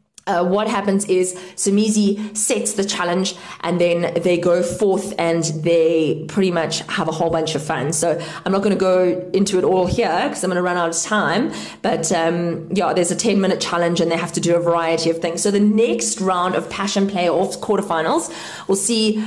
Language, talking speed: English, 210 wpm